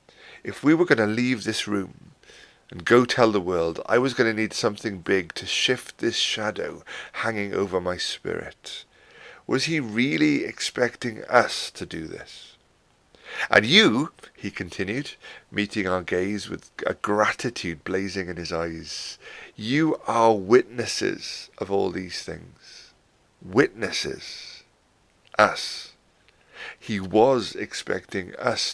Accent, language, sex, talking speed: British, English, male, 130 wpm